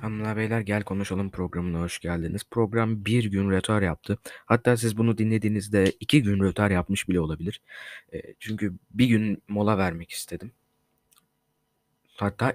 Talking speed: 145 wpm